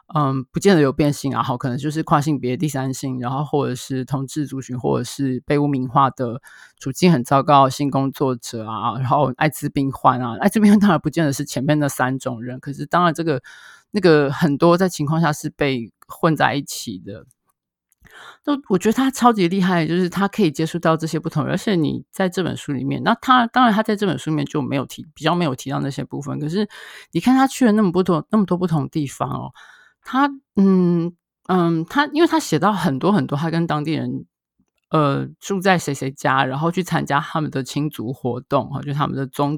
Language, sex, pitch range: Chinese, male, 135-185 Hz